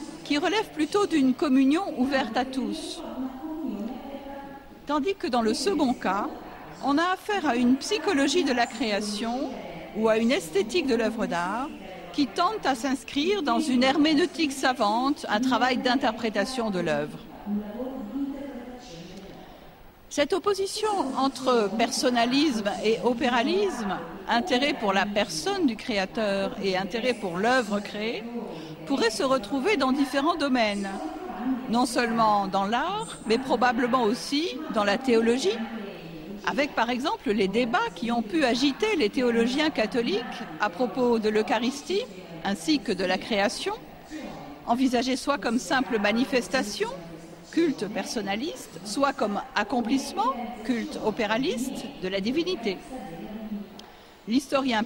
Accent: French